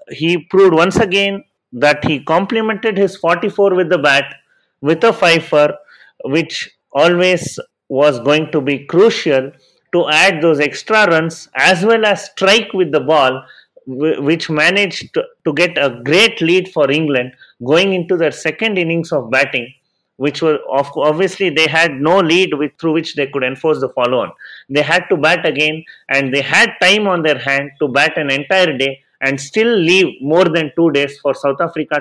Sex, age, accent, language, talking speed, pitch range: male, 30-49, Indian, English, 180 wpm, 145-185 Hz